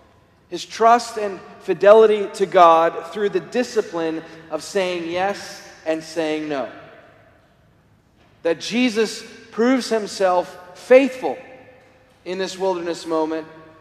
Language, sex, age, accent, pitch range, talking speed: English, male, 40-59, American, 155-195 Hz, 105 wpm